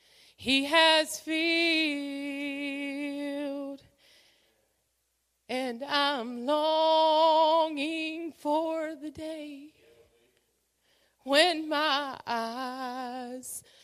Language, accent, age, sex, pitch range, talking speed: English, American, 20-39, female, 245-300 Hz, 50 wpm